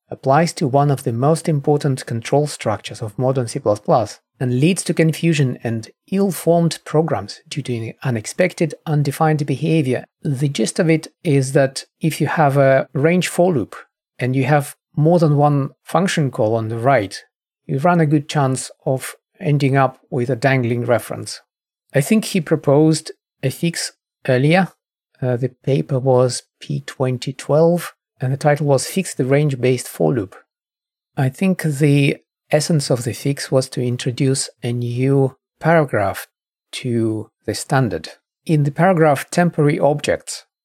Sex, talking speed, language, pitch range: male, 150 wpm, English, 130-160 Hz